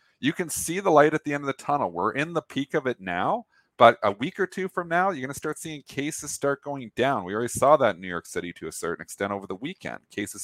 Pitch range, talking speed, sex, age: 100-135 Hz, 285 wpm, male, 40-59